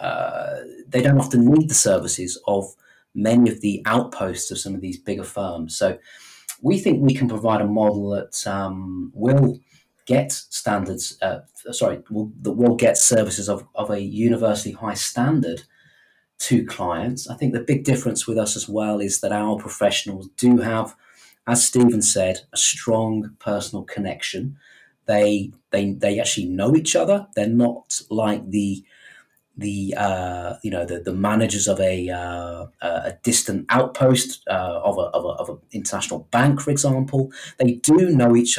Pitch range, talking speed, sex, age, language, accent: 95-120 Hz, 165 wpm, male, 30-49, English, British